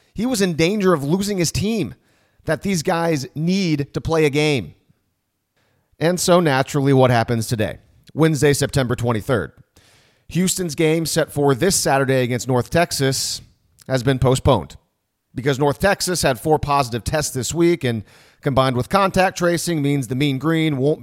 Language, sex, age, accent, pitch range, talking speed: English, male, 40-59, American, 125-165 Hz, 160 wpm